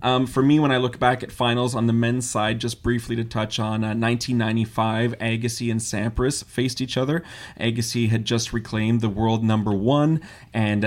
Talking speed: 195 wpm